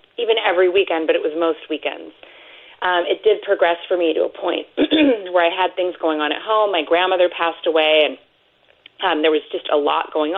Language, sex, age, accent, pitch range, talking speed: English, female, 30-49, American, 160-210 Hz, 215 wpm